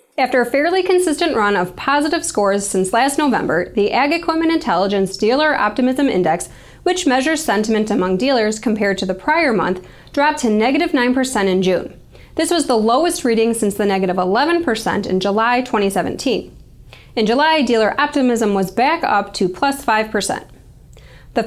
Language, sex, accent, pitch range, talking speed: English, female, American, 200-310 Hz, 160 wpm